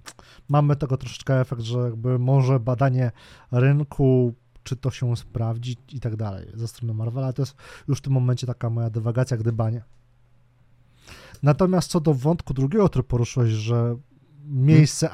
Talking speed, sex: 150 wpm, male